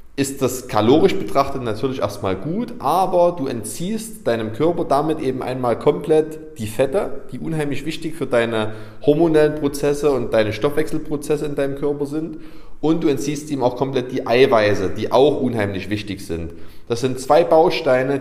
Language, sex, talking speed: German, male, 160 wpm